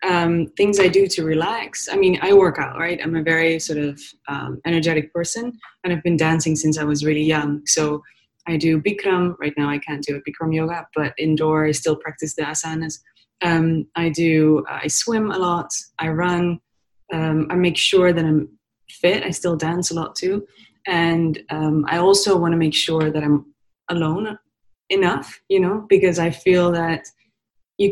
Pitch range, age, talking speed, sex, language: 155-185 Hz, 20-39, 195 wpm, female, English